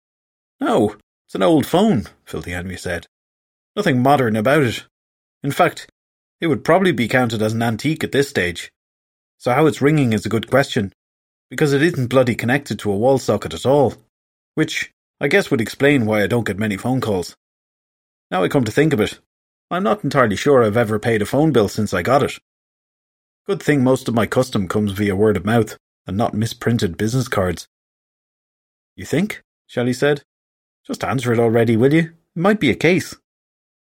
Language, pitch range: English, 95-130 Hz